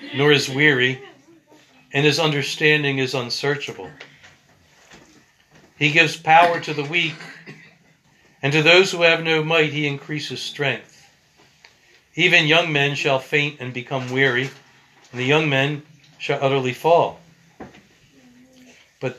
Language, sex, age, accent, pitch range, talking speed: English, male, 60-79, American, 135-165 Hz, 125 wpm